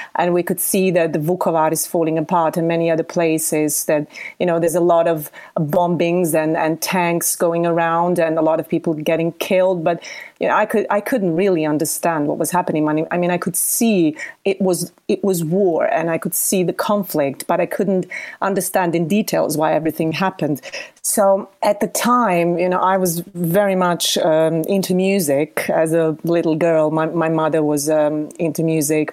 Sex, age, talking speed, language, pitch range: female, 30-49, 195 wpm, English, 160-195 Hz